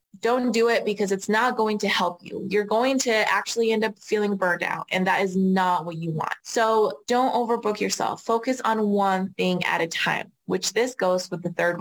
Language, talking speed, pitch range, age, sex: English, 220 wpm, 180-225 Hz, 20-39, female